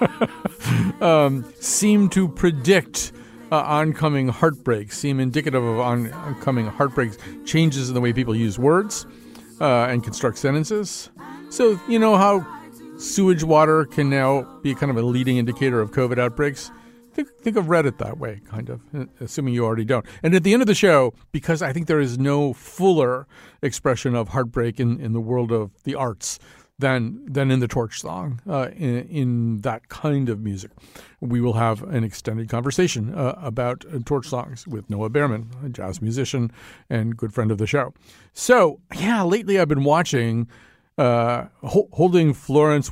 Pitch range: 115-145 Hz